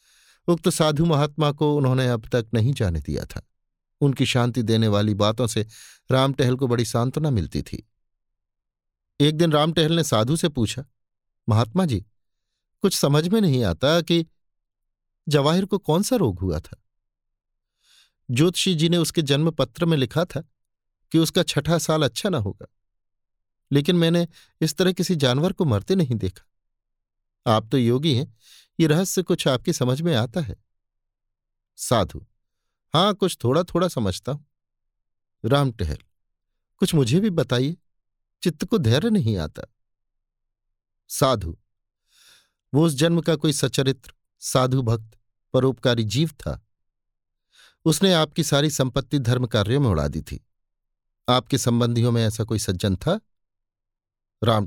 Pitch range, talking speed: 100-155 Hz, 145 wpm